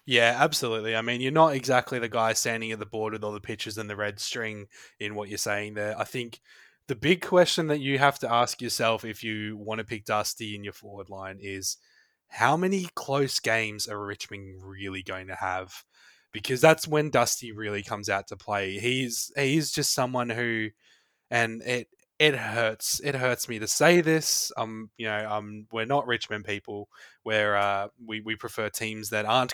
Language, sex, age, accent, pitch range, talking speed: English, male, 20-39, Australian, 105-130 Hz, 200 wpm